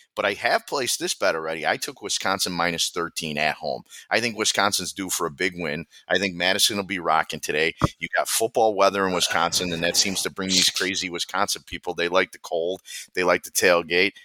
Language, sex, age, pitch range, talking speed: English, male, 30-49, 85-100 Hz, 220 wpm